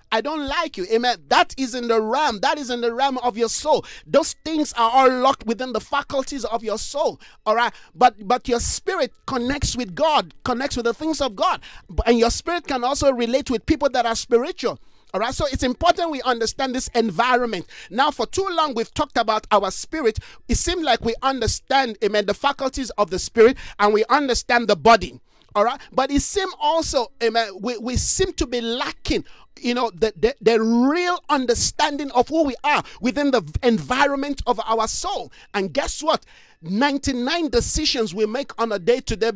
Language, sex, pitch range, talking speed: English, male, 225-280 Hz, 195 wpm